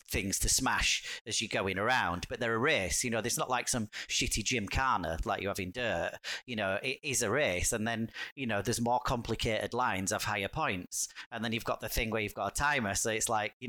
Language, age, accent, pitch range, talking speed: English, 30-49, British, 100-125 Hz, 245 wpm